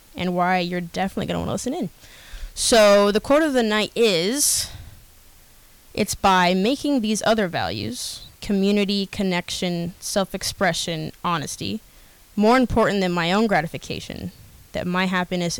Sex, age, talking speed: female, 10-29, 130 wpm